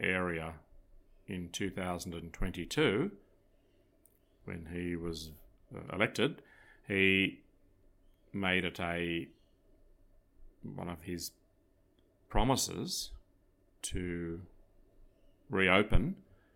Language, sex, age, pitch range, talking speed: English, male, 30-49, 90-110 Hz, 60 wpm